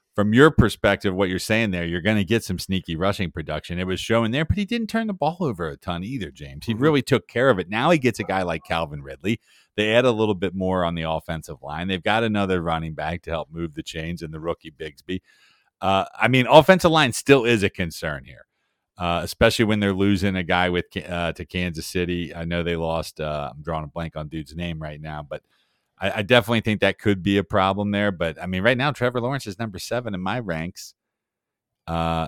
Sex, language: male, English